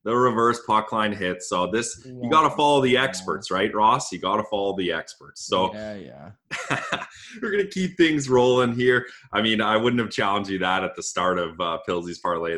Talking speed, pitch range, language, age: 215 wpm, 95-130 Hz, English, 20-39